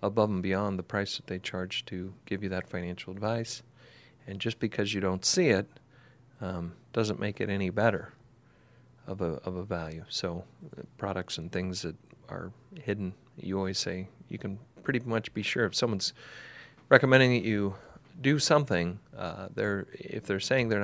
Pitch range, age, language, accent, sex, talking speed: 95-120 Hz, 40-59, English, American, male, 175 wpm